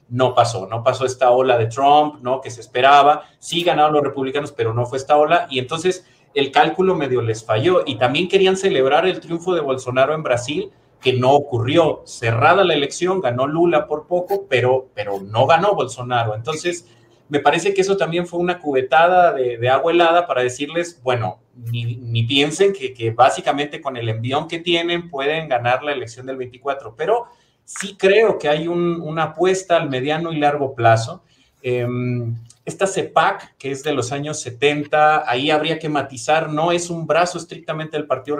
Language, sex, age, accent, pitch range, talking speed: Spanish, male, 30-49, Mexican, 130-170 Hz, 185 wpm